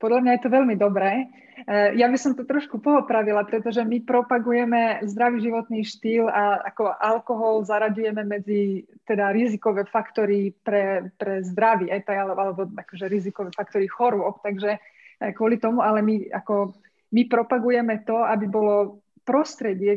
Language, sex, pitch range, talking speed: Slovak, female, 200-230 Hz, 140 wpm